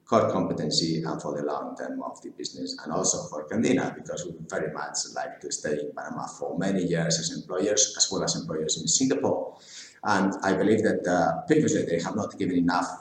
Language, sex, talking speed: English, male, 210 wpm